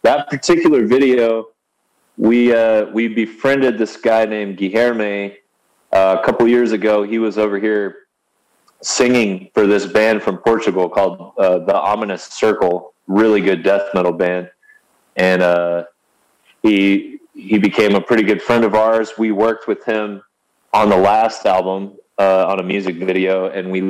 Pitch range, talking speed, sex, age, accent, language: 95-110 Hz, 155 wpm, male, 20-39, American, English